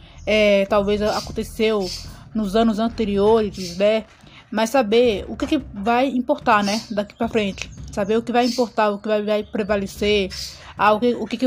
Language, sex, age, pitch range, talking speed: Portuguese, female, 20-39, 210-240 Hz, 180 wpm